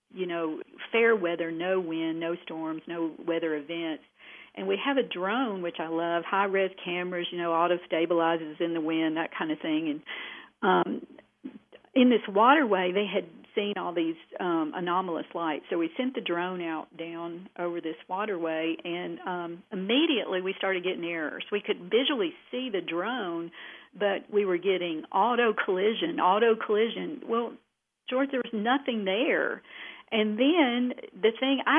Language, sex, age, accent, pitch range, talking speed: English, female, 50-69, American, 170-230 Hz, 160 wpm